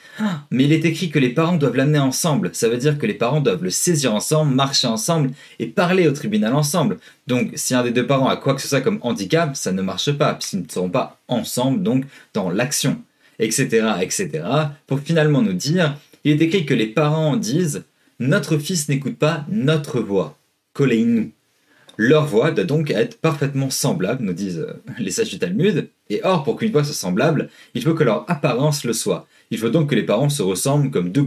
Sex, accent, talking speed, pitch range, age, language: male, French, 215 wpm, 135-175 Hz, 30-49, French